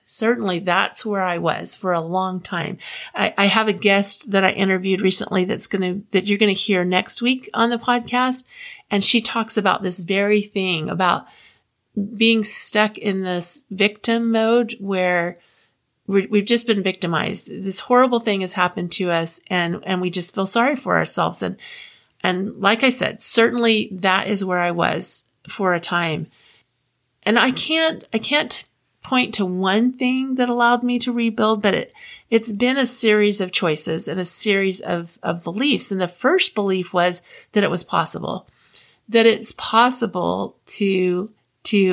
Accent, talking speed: American, 175 wpm